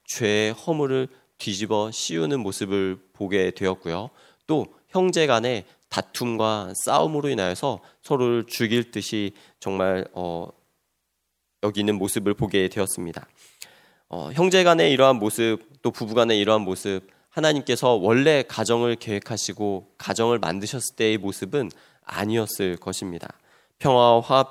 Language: Korean